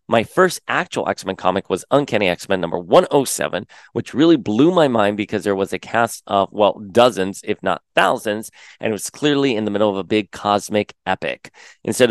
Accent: American